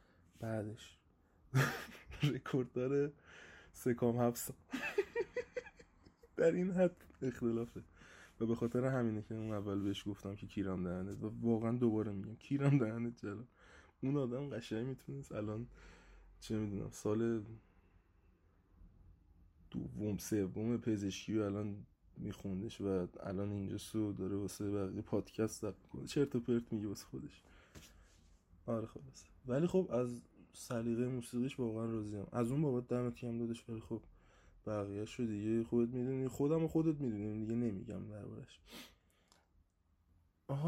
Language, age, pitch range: Persian, 20-39, 100-130 Hz